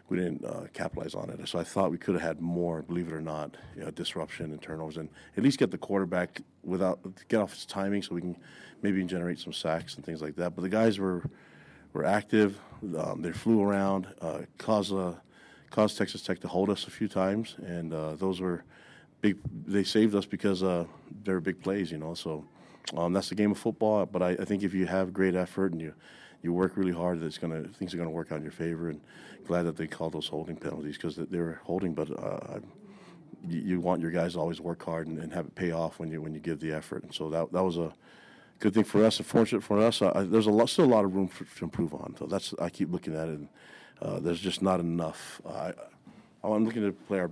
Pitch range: 80-95 Hz